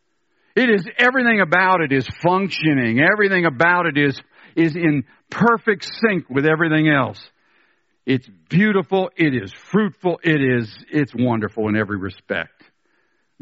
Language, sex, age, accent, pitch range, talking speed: English, male, 60-79, American, 120-165 Hz, 150 wpm